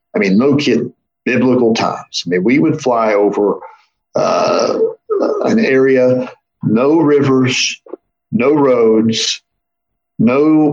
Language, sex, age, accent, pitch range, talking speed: English, male, 50-69, American, 115-150 Hz, 110 wpm